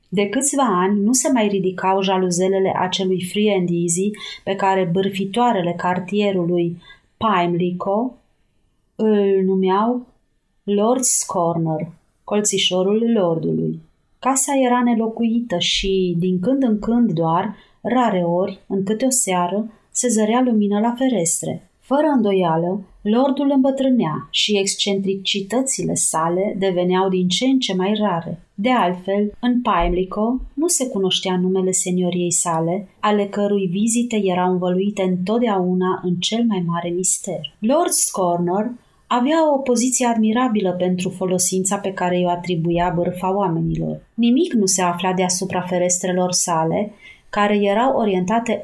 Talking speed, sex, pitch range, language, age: 125 wpm, female, 180-225 Hz, Romanian, 30-49